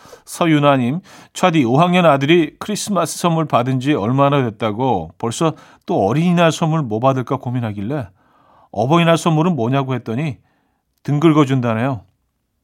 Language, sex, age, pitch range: Korean, male, 40-59, 130-175 Hz